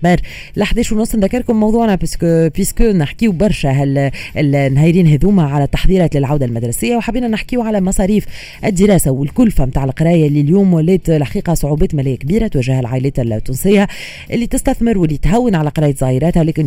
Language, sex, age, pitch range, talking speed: Arabic, female, 30-49, 145-195 Hz, 160 wpm